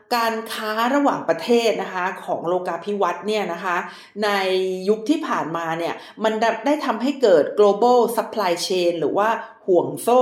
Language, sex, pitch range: Thai, female, 185-245 Hz